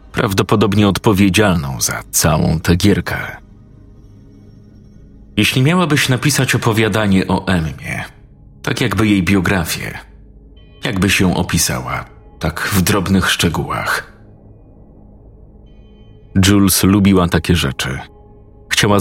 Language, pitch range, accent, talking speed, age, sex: Polish, 90-105 Hz, native, 90 wpm, 40-59, male